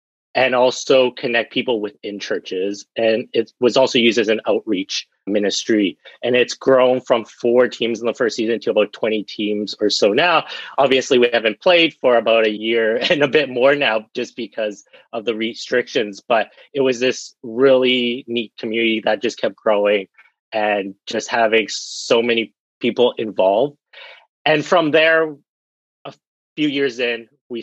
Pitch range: 110-125 Hz